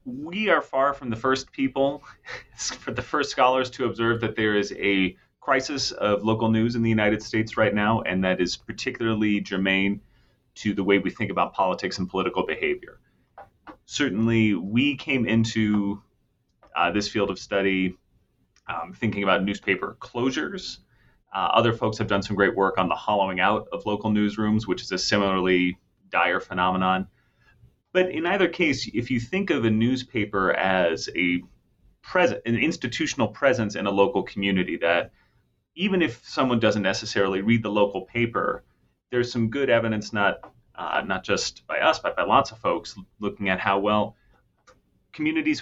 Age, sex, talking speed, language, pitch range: 30-49, male, 165 wpm, English, 100-120 Hz